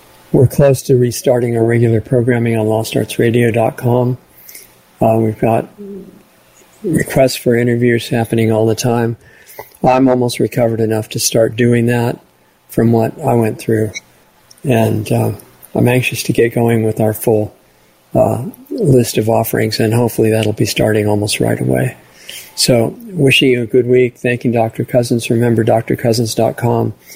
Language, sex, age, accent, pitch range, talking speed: English, male, 50-69, American, 115-125 Hz, 145 wpm